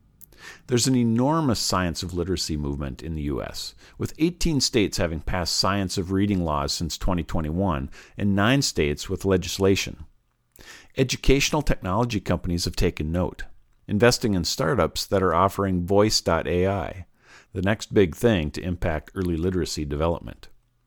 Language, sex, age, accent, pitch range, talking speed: English, male, 50-69, American, 90-120 Hz, 140 wpm